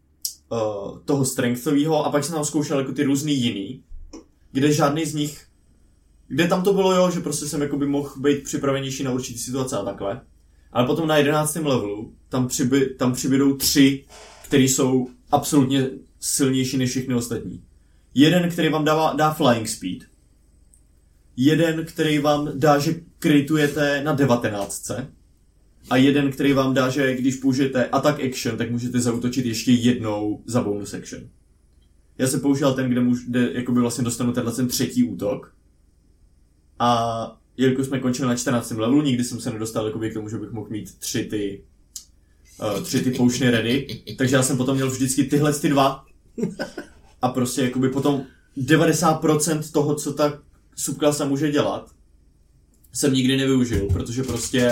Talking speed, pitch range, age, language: 155 wpm, 110-145 Hz, 20-39, Czech